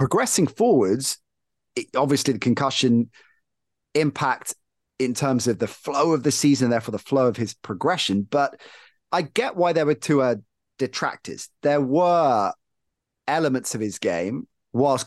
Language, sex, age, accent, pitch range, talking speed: English, male, 30-49, British, 105-135 Hz, 140 wpm